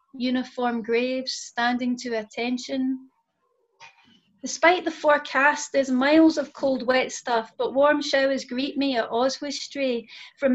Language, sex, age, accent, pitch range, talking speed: English, female, 30-49, British, 240-275 Hz, 125 wpm